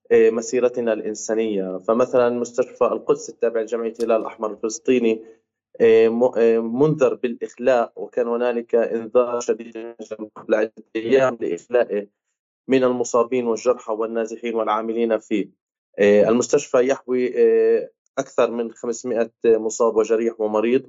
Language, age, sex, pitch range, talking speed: Arabic, 20-39, male, 115-155 Hz, 100 wpm